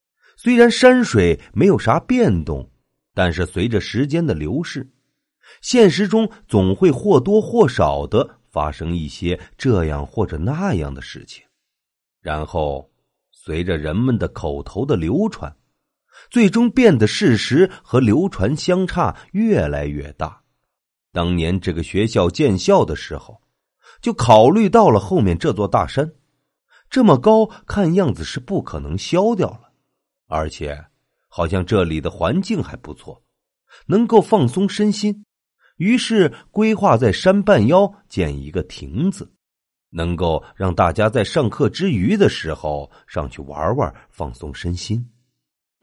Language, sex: Chinese, male